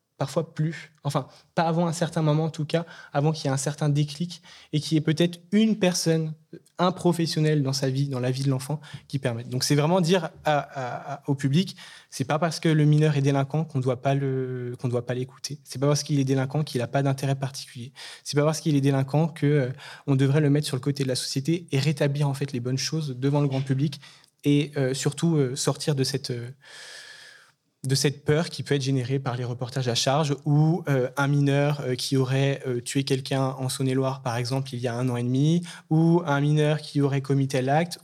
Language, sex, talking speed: French, male, 230 wpm